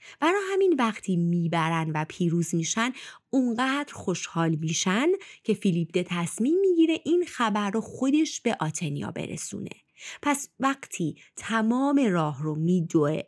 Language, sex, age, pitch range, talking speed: Persian, female, 30-49, 170-285 Hz, 125 wpm